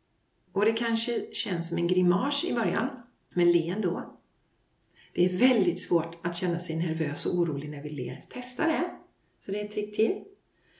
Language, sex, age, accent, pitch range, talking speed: Swedish, female, 40-59, native, 175-280 Hz, 185 wpm